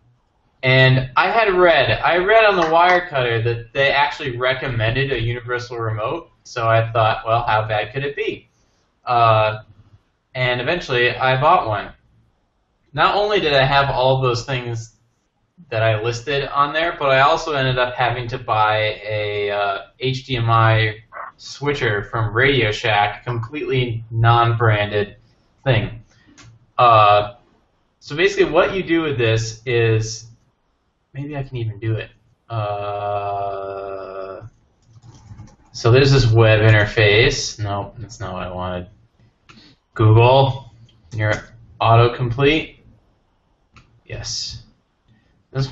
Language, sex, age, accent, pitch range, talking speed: English, male, 20-39, American, 110-130 Hz, 125 wpm